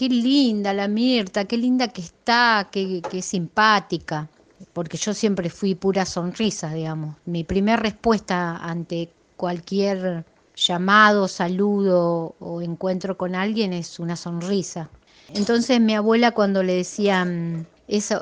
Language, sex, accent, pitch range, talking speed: Spanish, female, Argentinian, 175-220 Hz, 130 wpm